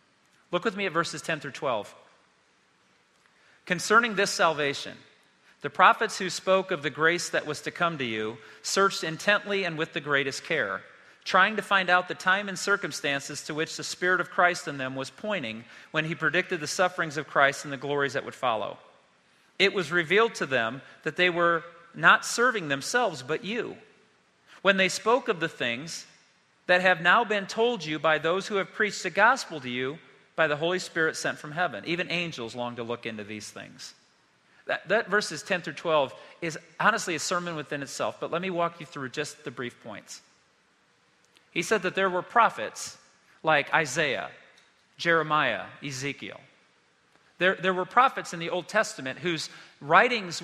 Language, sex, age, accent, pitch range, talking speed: English, male, 40-59, American, 145-190 Hz, 180 wpm